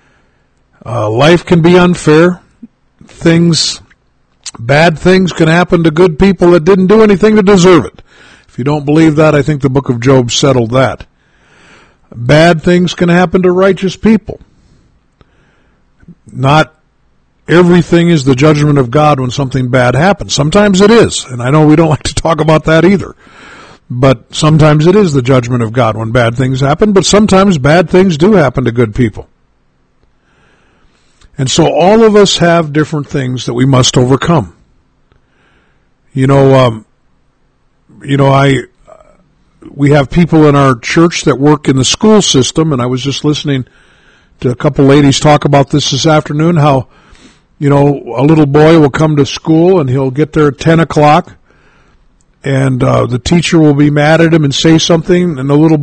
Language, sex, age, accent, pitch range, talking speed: English, male, 50-69, American, 135-170 Hz, 175 wpm